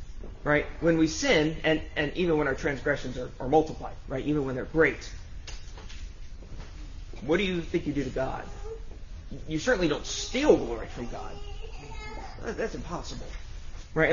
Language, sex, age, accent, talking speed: English, male, 30-49, American, 155 wpm